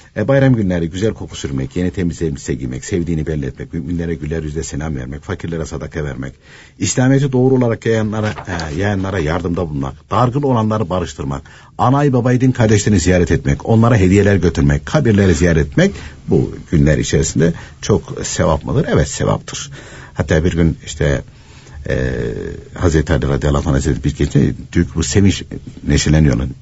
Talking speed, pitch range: 140 wpm, 70-105 Hz